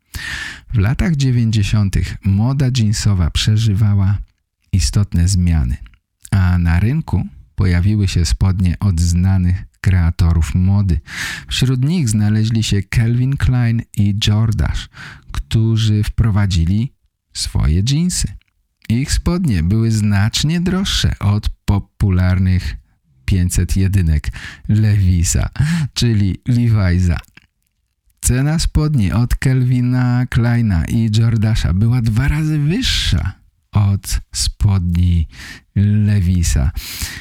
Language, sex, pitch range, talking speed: Polish, male, 90-115 Hz, 90 wpm